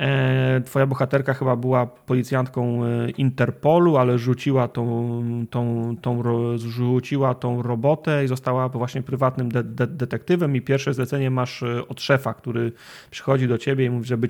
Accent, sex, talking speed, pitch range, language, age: native, male, 145 wpm, 120-135 Hz, Polish, 30-49